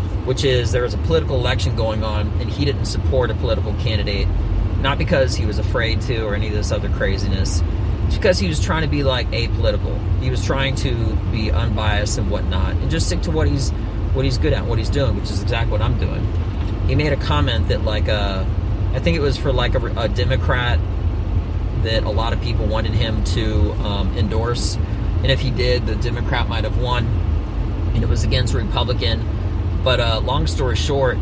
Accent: American